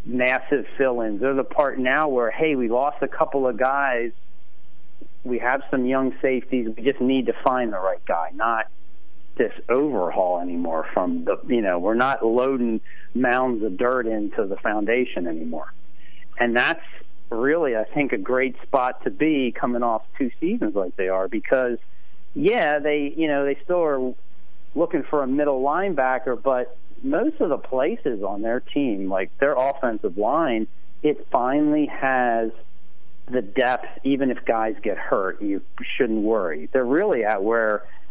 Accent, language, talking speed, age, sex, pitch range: American, English, 165 wpm, 40-59, male, 110-135 Hz